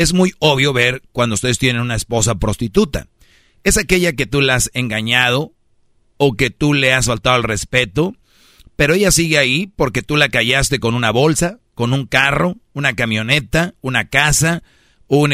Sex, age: male, 40-59